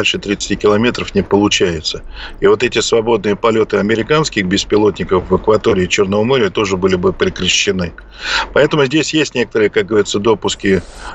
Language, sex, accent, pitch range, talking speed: Russian, male, native, 95-115 Hz, 140 wpm